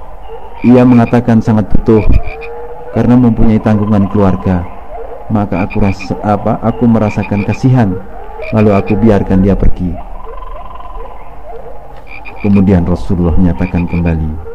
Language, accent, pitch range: Indonesian, native, 90-120 Hz